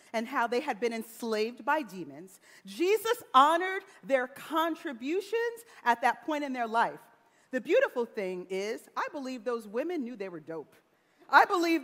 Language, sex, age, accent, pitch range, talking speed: English, female, 40-59, American, 230-320 Hz, 160 wpm